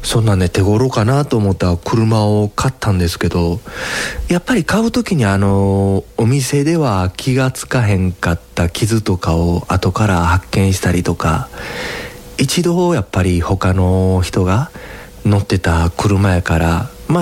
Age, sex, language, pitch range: 40-59, male, Japanese, 95-140 Hz